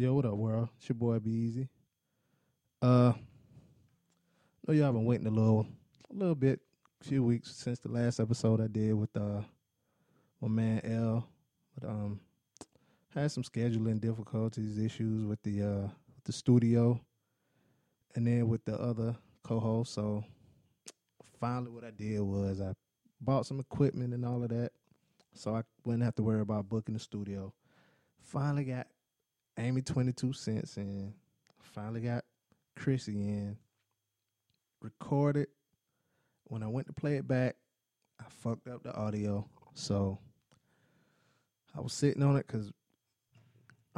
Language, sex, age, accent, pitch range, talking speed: English, male, 20-39, American, 110-130 Hz, 145 wpm